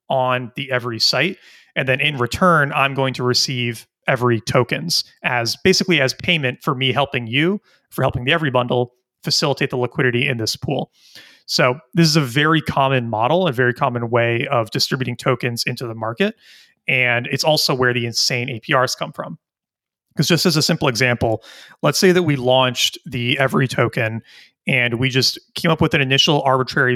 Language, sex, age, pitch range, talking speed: English, male, 30-49, 120-150 Hz, 185 wpm